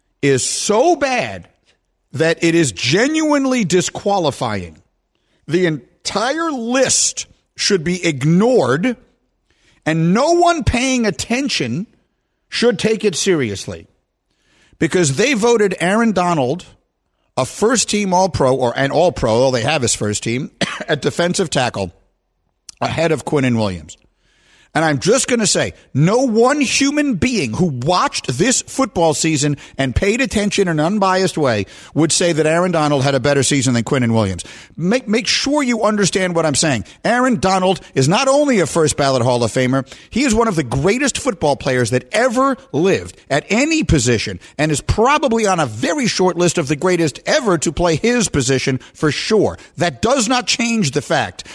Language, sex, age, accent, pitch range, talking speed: English, male, 50-69, American, 135-225 Hz, 165 wpm